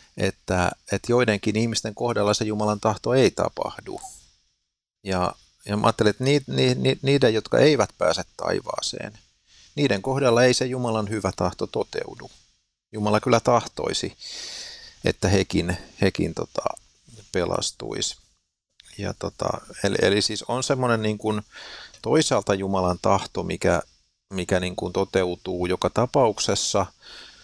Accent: native